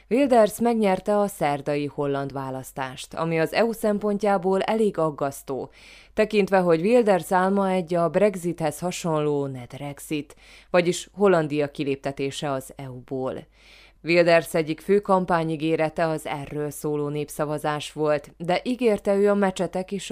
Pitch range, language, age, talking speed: 140-185 Hz, Hungarian, 20-39, 120 wpm